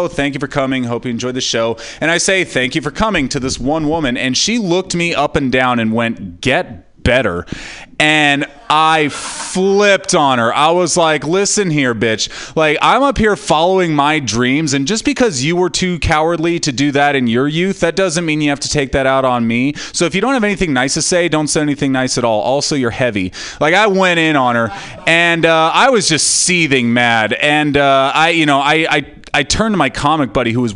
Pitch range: 125-170 Hz